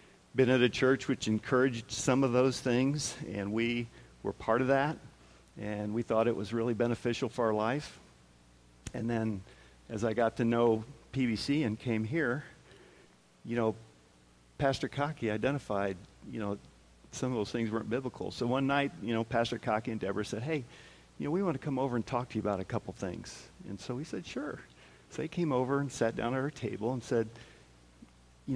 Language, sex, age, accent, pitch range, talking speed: English, male, 50-69, American, 100-130 Hz, 195 wpm